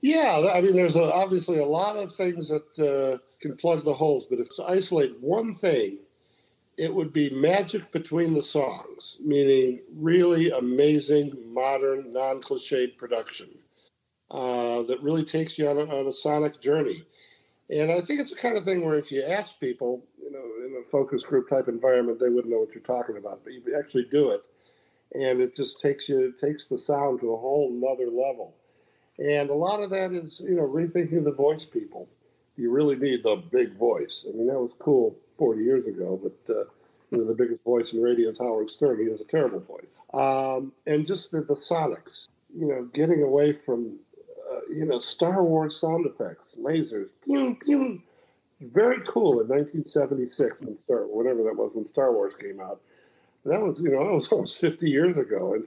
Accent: American